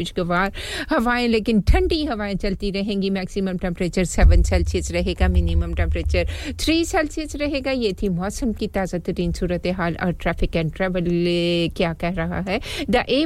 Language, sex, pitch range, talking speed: English, female, 155-210 Hz, 125 wpm